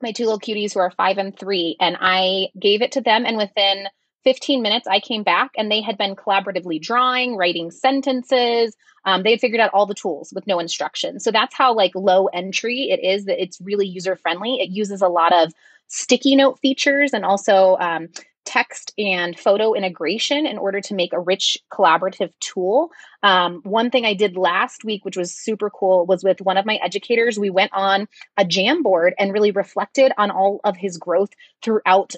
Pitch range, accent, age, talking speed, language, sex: 185-230 Hz, American, 30-49, 200 wpm, English, female